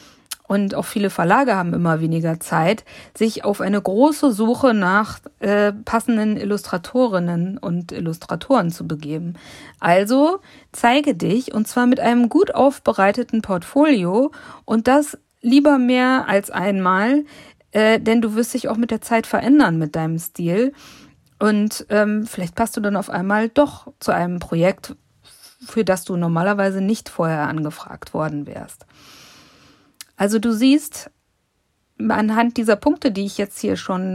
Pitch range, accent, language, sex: 180-235 Hz, German, German, female